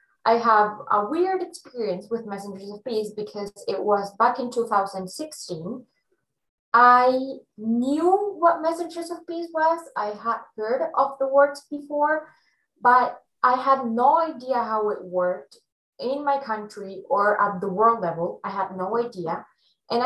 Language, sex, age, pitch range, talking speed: Vietnamese, female, 20-39, 195-260 Hz, 150 wpm